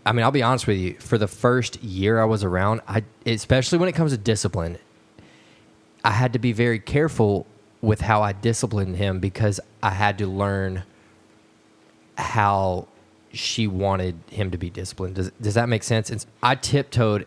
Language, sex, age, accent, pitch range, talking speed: English, male, 20-39, American, 100-120 Hz, 180 wpm